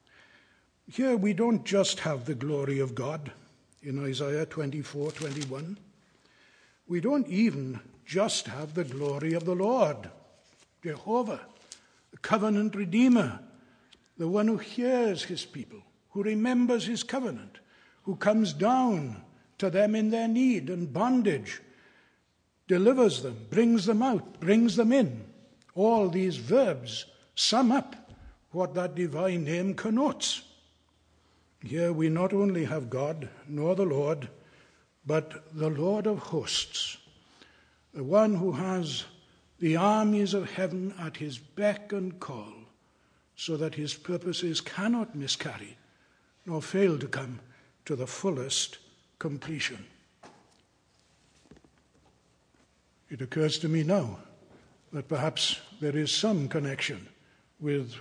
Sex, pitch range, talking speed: male, 145-210 Hz, 125 wpm